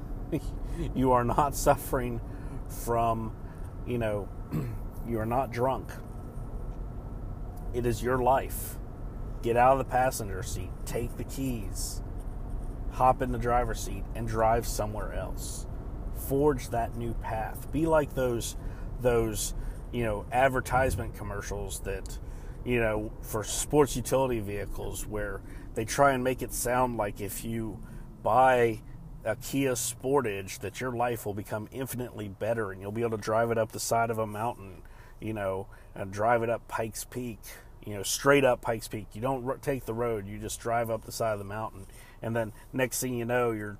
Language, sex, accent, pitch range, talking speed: English, male, American, 105-125 Hz, 165 wpm